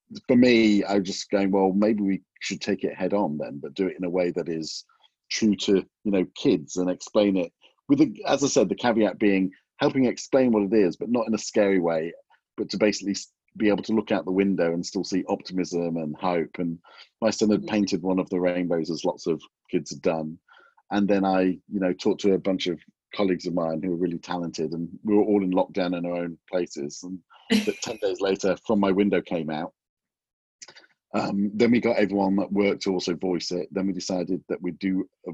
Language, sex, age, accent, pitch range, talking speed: English, male, 40-59, British, 90-105 Hz, 230 wpm